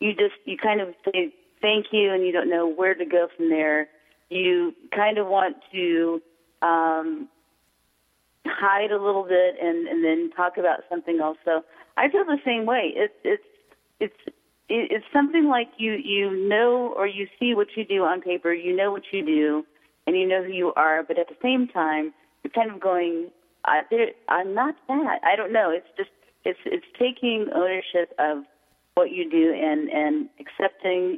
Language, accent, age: English, American, 30-49